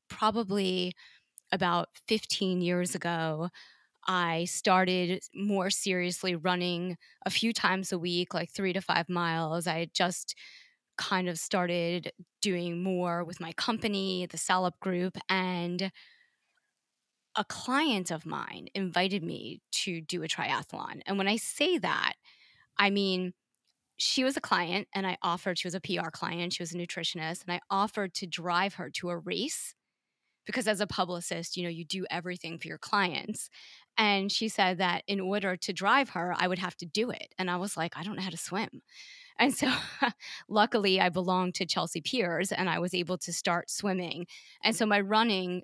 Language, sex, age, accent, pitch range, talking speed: English, female, 20-39, American, 175-205 Hz, 175 wpm